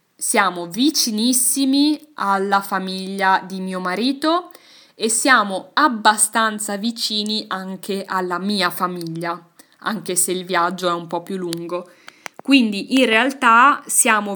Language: Italian